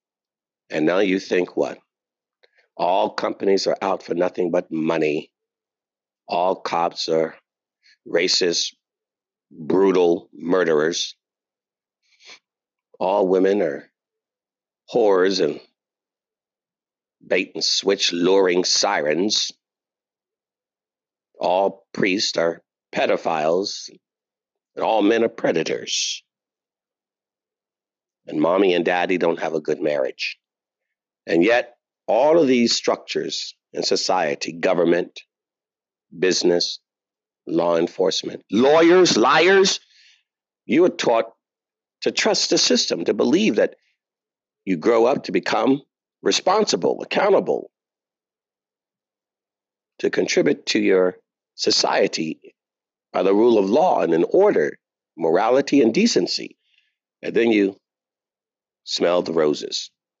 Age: 50-69